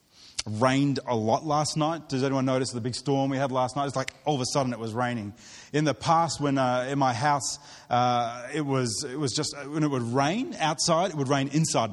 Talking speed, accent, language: 235 wpm, Australian, English